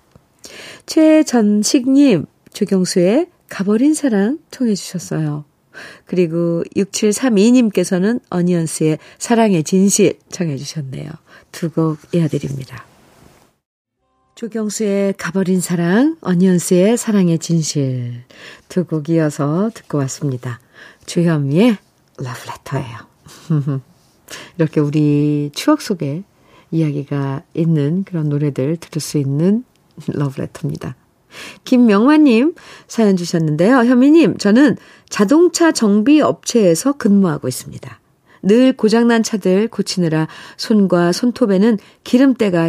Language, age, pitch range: Korean, 50-69, 155-230 Hz